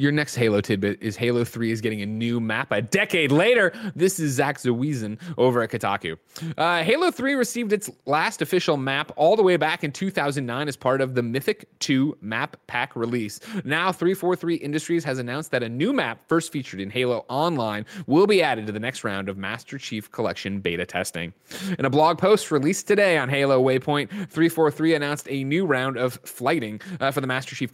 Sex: male